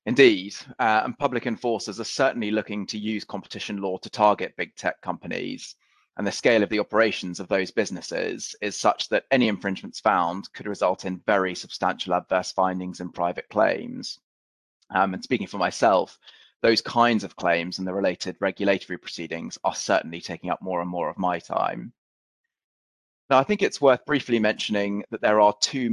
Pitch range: 90-105 Hz